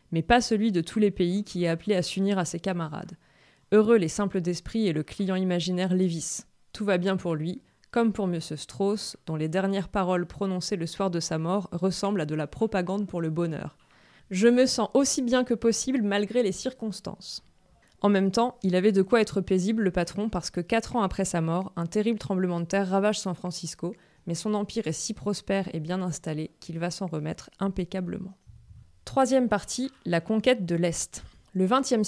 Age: 20-39